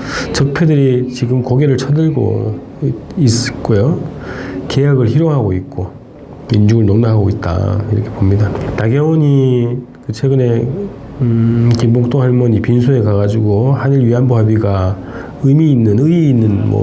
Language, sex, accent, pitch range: Korean, male, native, 105-130 Hz